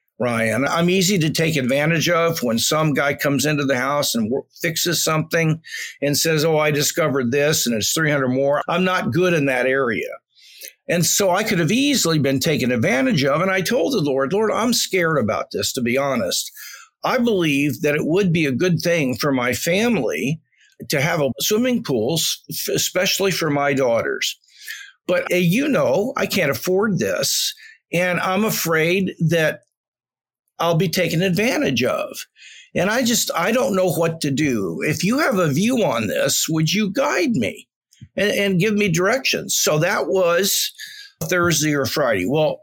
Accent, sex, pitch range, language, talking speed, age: American, male, 150-195 Hz, English, 175 wpm, 50-69